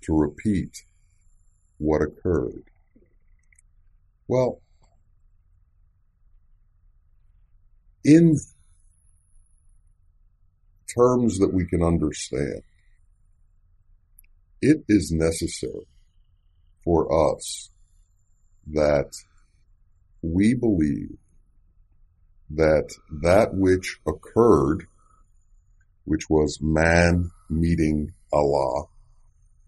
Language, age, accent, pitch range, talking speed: English, 60-79, American, 85-100 Hz, 55 wpm